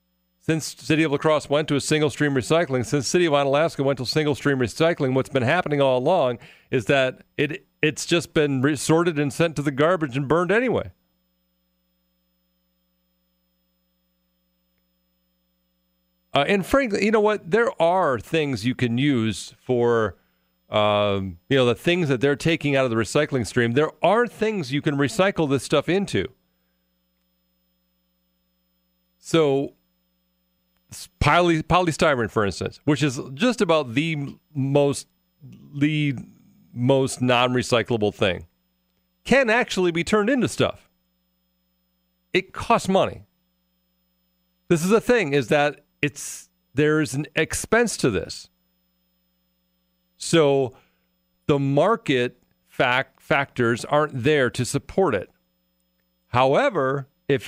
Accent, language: American, English